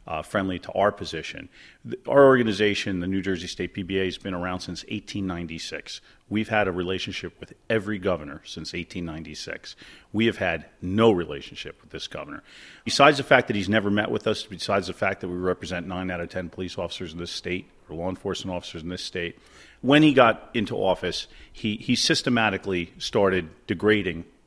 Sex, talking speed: male, 185 wpm